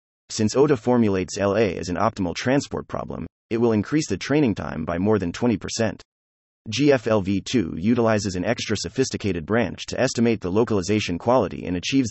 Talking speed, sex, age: 160 wpm, male, 30-49